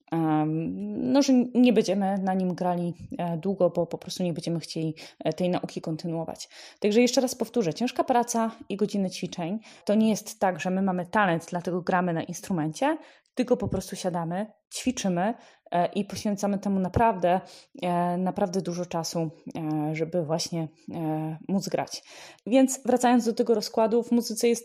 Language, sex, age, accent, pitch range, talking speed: Polish, female, 20-39, native, 175-235 Hz, 150 wpm